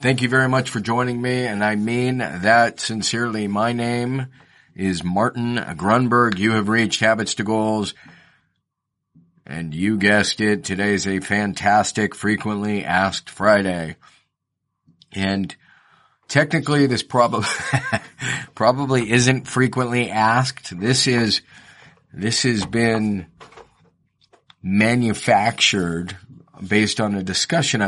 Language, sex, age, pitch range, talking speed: English, male, 40-59, 95-115 Hz, 110 wpm